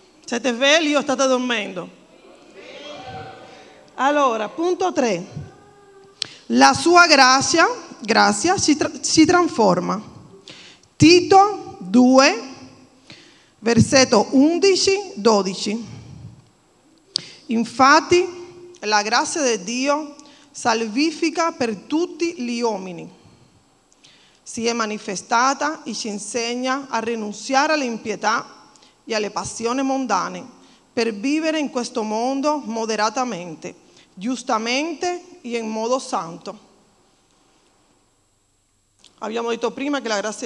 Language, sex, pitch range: Italian, female, 210-280 Hz